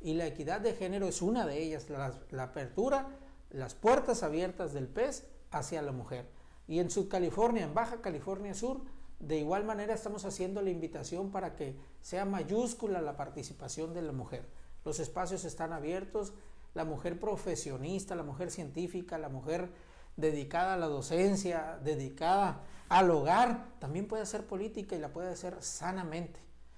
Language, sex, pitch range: Spanish, male, 150-195 Hz